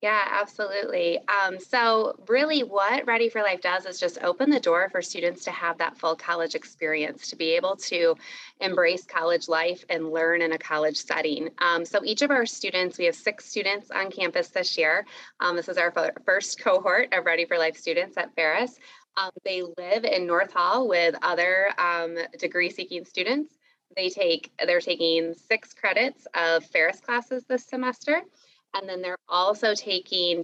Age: 20-39